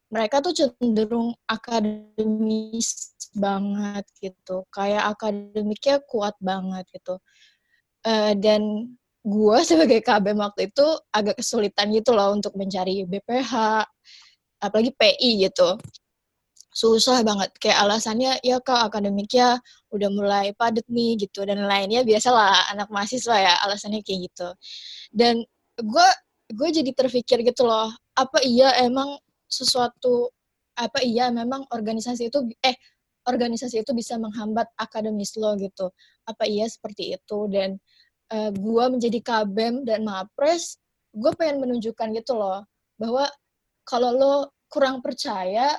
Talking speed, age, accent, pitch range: 125 wpm, 20-39, native, 210-255 Hz